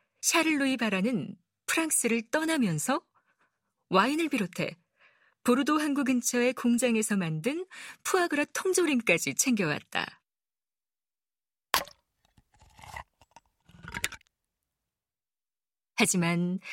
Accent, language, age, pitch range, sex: native, Korean, 40-59, 185-265 Hz, female